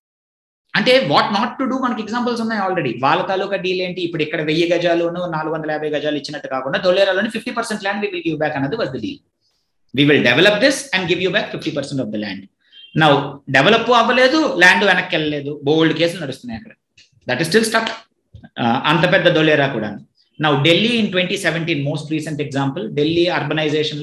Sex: male